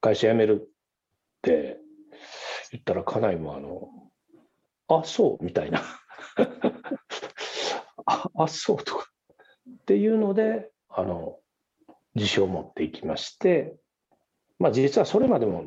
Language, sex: Japanese, male